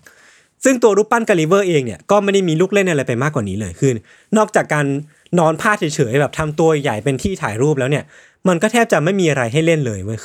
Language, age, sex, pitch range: Thai, 20-39, male, 135-180 Hz